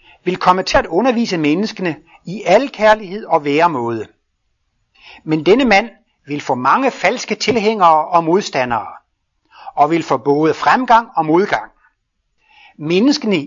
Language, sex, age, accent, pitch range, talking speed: Danish, male, 60-79, native, 145-205 Hz, 130 wpm